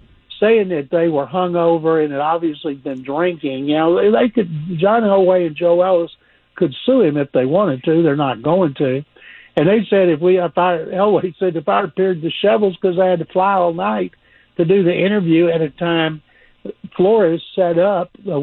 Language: English